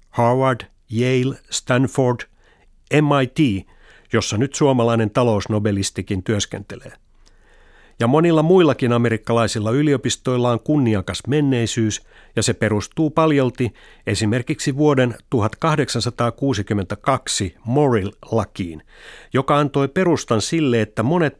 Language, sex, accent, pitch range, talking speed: Finnish, male, native, 105-140 Hz, 85 wpm